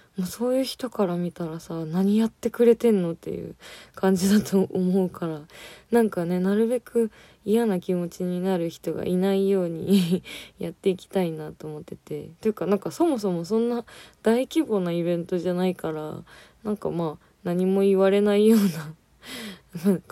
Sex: female